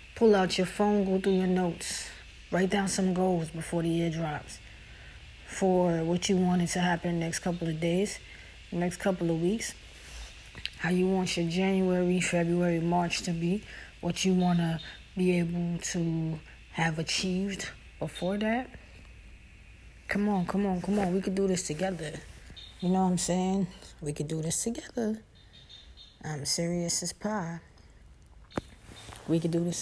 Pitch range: 160-185 Hz